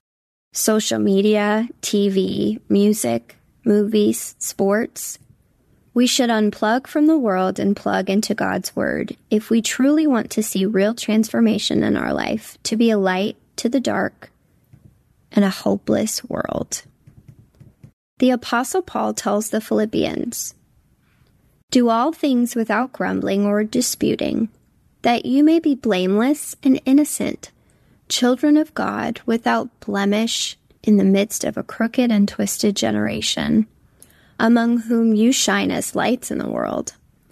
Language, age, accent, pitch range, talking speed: English, 20-39, American, 200-245 Hz, 130 wpm